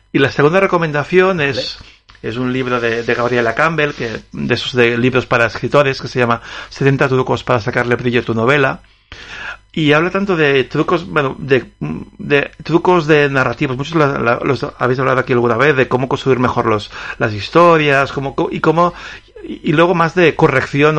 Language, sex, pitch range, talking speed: Spanish, male, 120-165 Hz, 185 wpm